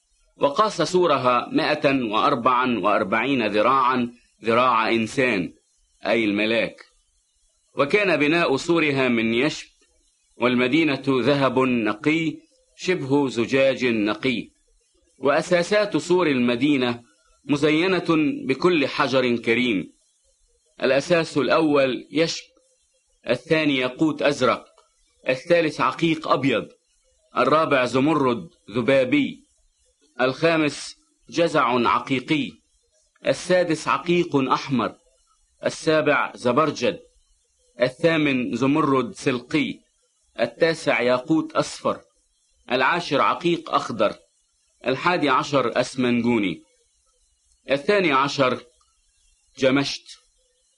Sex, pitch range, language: male, 130-185 Hz, English